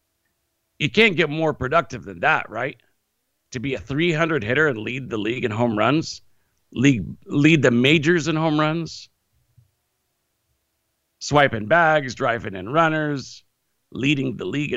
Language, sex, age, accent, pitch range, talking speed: English, male, 50-69, American, 100-140 Hz, 140 wpm